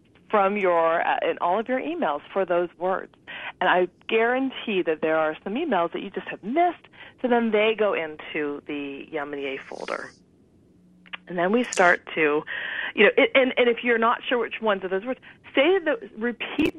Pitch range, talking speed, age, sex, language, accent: 170-255 Hz, 195 wpm, 40-59, female, English, American